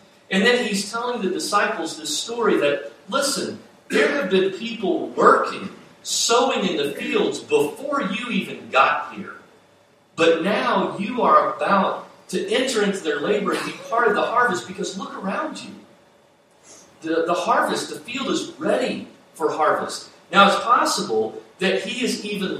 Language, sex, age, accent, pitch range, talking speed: English, male, 40-59, American, 170-245 Hz, 160 wpm